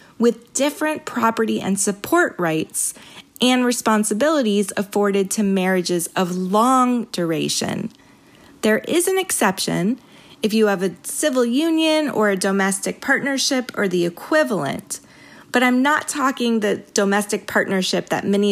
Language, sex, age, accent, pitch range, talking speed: English, female, 30-49, American, 180-235 Hz, 130 wpm